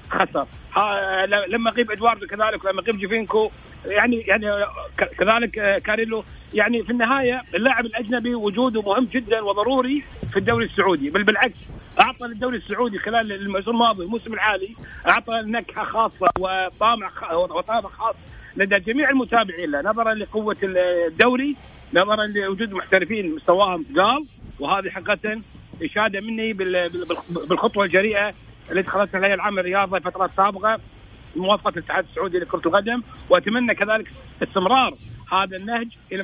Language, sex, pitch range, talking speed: Arabic, male, 190-230 Hz, 125 wpm